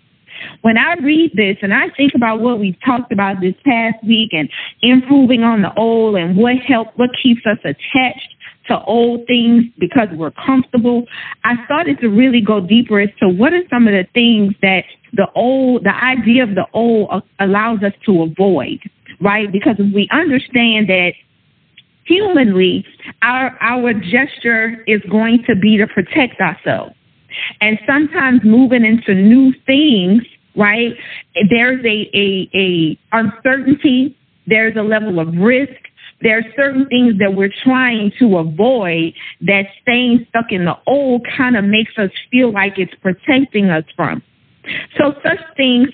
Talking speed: 160 wpm